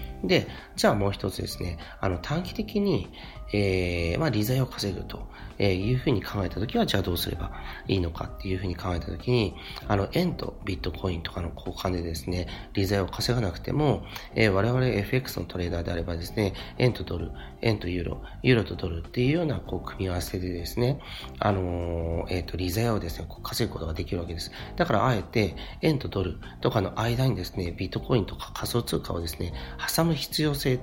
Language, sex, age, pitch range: Japanese, male, 40-59, 85-115 Hz